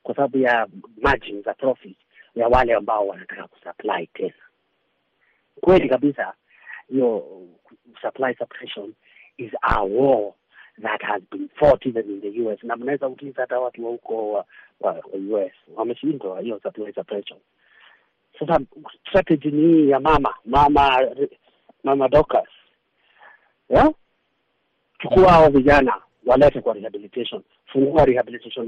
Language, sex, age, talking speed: Swahili, male, 50-69, 115 wpm